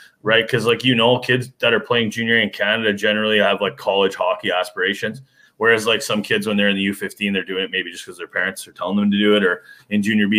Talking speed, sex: 260 wpm, male